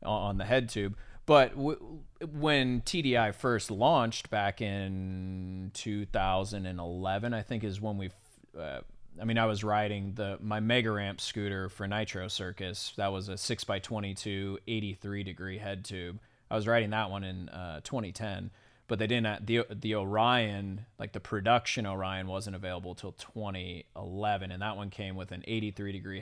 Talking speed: 160 wpm